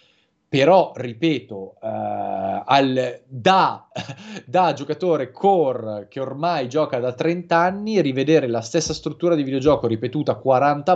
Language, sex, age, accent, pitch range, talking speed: Italian, male, 30-49, native, 125-165 Hz, 120 wpm